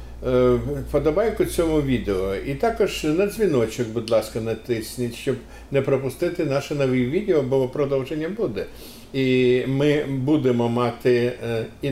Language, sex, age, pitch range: Ukrainian, male, 50-69, 125-150 Hz